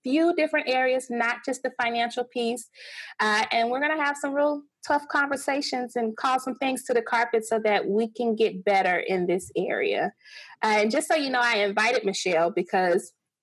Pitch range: 200-255 Hz